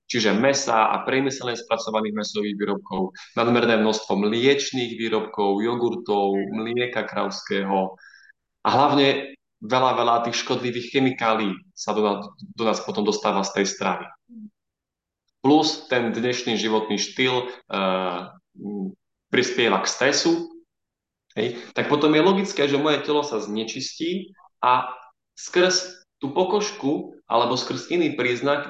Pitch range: 110-175 Hz